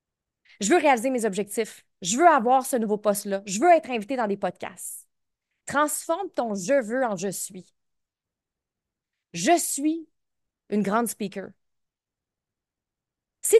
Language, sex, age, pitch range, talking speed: French, female, 30-49, 195-265 Hz, 155 wpm